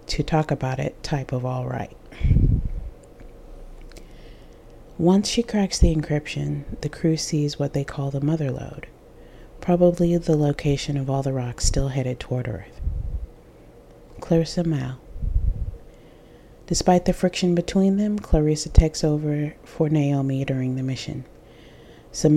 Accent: American